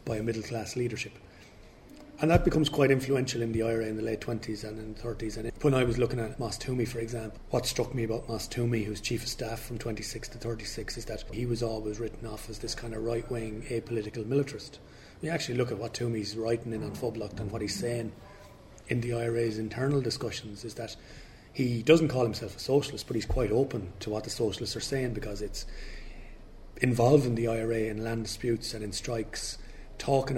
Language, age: English, 30-49